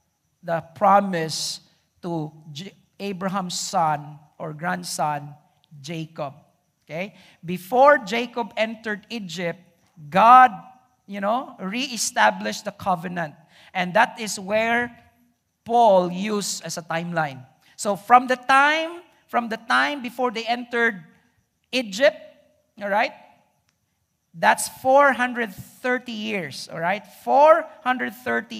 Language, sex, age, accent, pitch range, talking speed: English, male, 50-69, Filipino, 180-255 Hz, 100 wpm